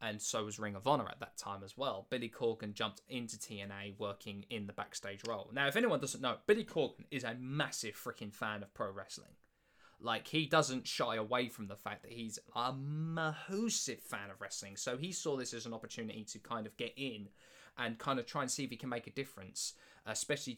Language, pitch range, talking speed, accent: English, 105-145 Hz, 220 wpm, British